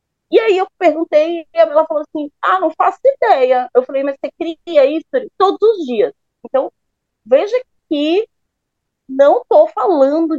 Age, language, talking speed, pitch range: 30-49, Portuguese, 155 wpm, 225-335 Hz